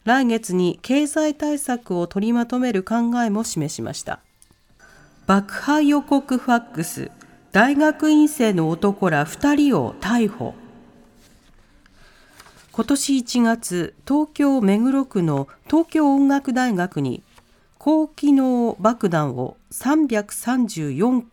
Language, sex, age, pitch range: Japanese, female, 40-59, 175-260 Hz